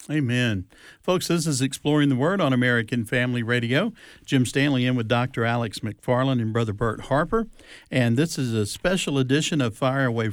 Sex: male